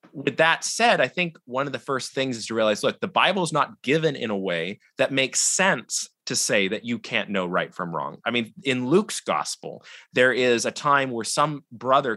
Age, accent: 20-39, American